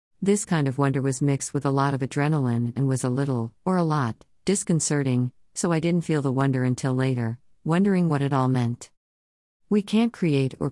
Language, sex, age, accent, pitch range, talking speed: English, female, 50-69, American, 130-165 Hz, 200 wpm